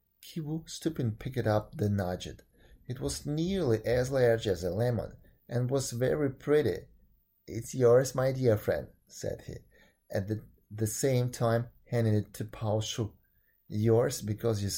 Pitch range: 105-135 Hz